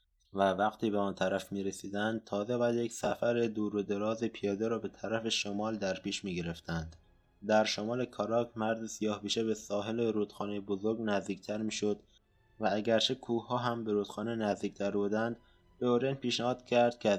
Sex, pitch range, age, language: male, 100-115 Hz, 20-39, Persian